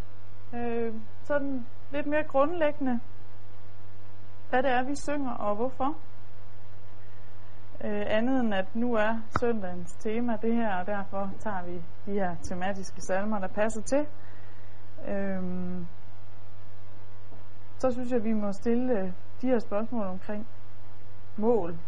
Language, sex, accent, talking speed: Danish, female, native, 115 wpm